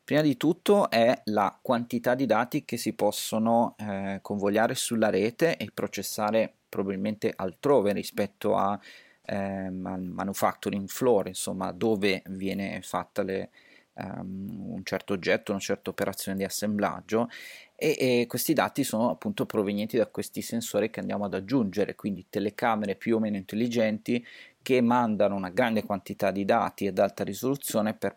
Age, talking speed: 30-49, 140 wpm